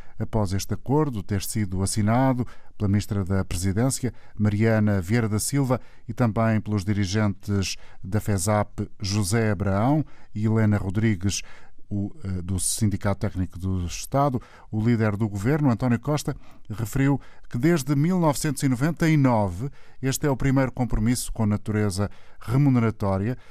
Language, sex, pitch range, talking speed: Portuguese, male, 105-130 Hz, 125 wpm